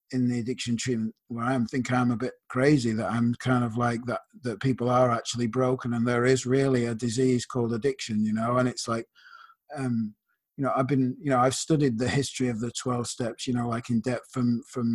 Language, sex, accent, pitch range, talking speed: English, male, British, 125-135 Hz, 230 wpm